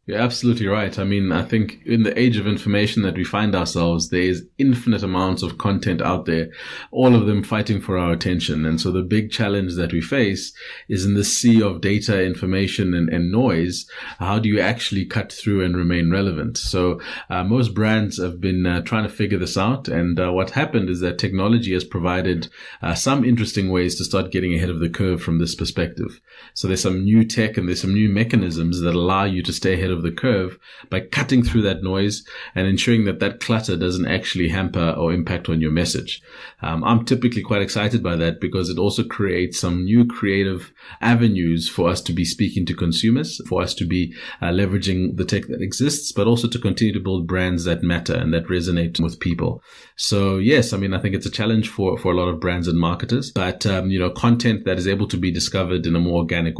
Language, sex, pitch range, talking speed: English, male, 90-105 Hz, 215 wpm